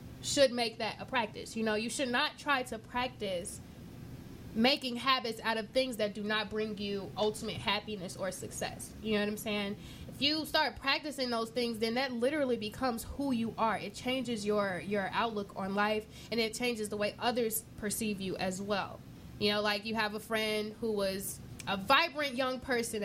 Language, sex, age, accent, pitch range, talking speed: English, female, 20-39, American, 205-245 Hz, 195 wpm